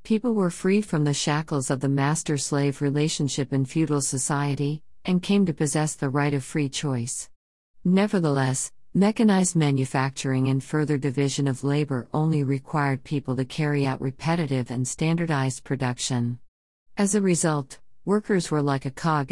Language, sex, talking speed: English, female, 150 wpm